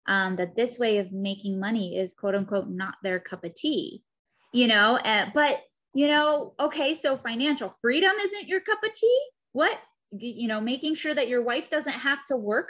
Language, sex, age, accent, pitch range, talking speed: English, female, 20-39, American, 205-305 Hz, 200 wpm